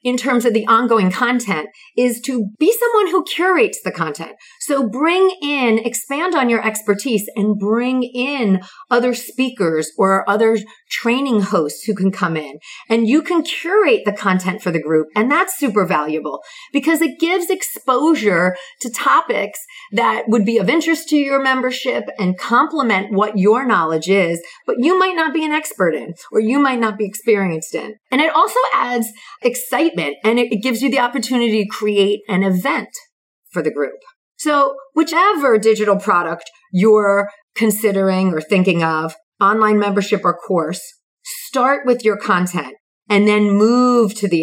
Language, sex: English, female